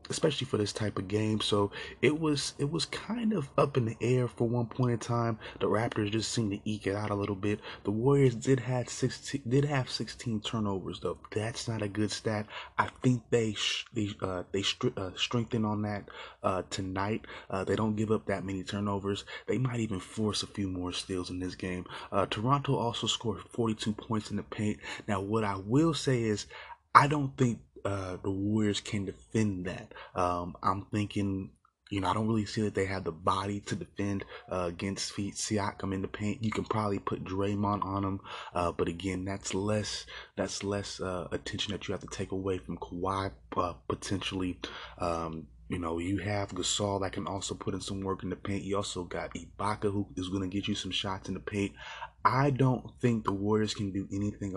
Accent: American